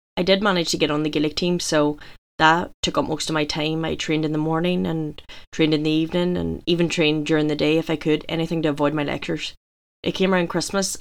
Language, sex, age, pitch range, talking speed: English, female, 20-39, 155-175 Hz, 245 wpm